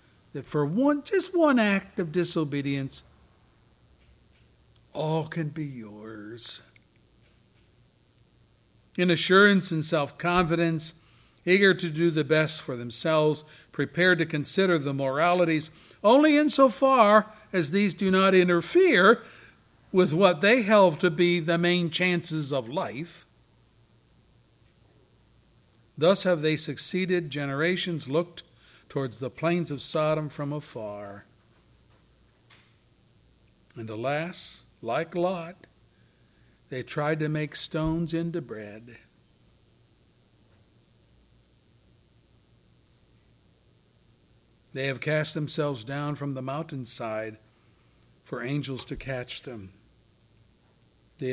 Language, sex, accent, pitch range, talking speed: English, male, American, 115-175 Hz, 100 wpm